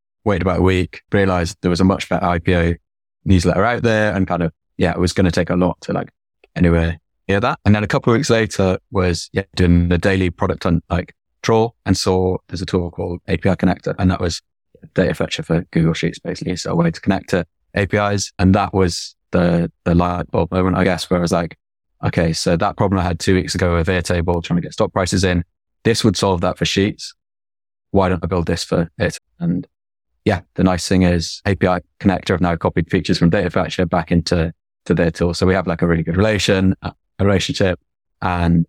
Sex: male